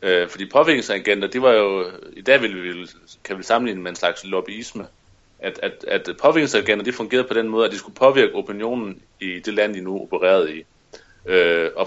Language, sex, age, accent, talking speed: Danish, male, 30-49, native, 190 wpm